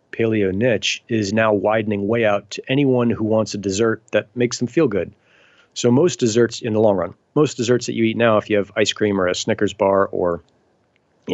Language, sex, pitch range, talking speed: English, male, 105-125 Hz, 220 wpm